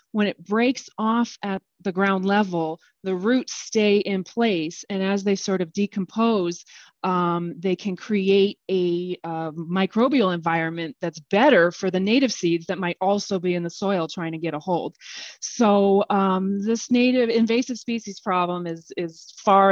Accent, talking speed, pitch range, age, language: American, 165 wpm, 165-195 Hz, 30-49, English